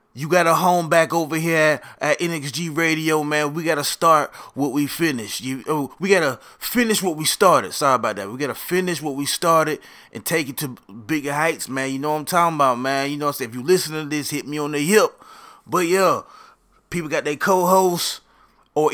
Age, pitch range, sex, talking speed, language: 20-39, 150-180 Hz, male, 230 wpm, English